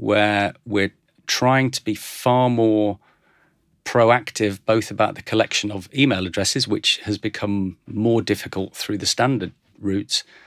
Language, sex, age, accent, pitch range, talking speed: English, male, 40-59, British, 100-115 Hz, 140 wpm